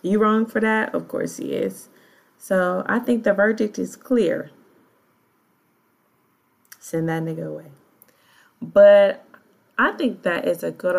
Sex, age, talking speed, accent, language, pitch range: female, 20-39, 140 wpm, American, English, 180-225 Hz